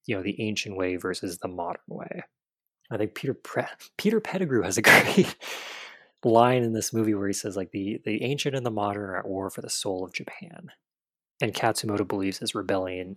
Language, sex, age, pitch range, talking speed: English, male, 20-39, 95-125 Hz, 205 wpm